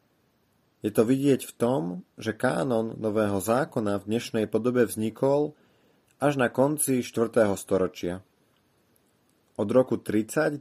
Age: 30-49